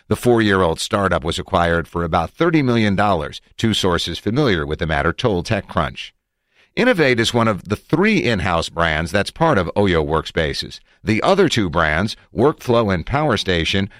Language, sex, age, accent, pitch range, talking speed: English, male, 50-69, American, 85-110 Hz, 165 wpm